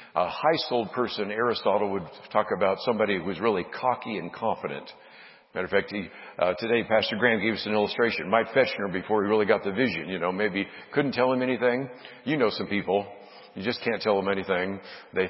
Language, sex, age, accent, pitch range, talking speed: English, male, 60-79, American, 105-125 Hz, 205 wpm